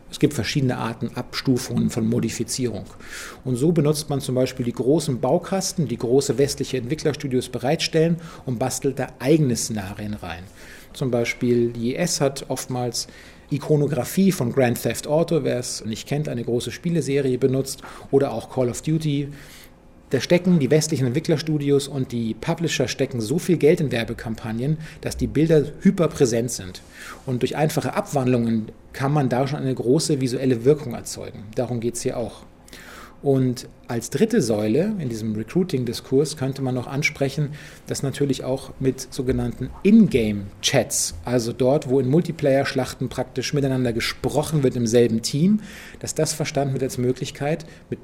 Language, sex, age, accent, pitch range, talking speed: German, male, 40-59, German, 120-150 Hz, 155 wpm